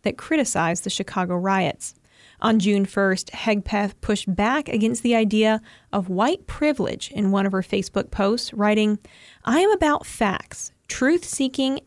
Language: English